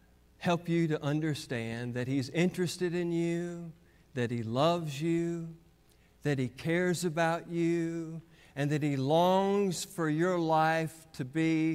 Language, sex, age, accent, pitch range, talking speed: English, male, 50-69, American, 145-195 Hz, 140 wpm